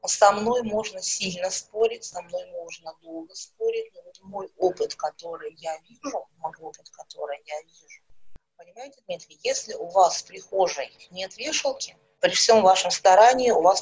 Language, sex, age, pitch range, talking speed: Russian, female, 30-49, 175-245 Hz, 160 wpm